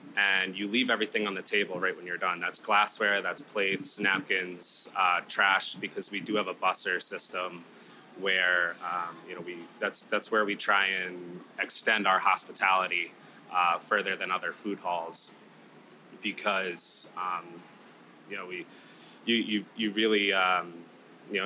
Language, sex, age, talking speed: English, male, 20-39, 155 wpm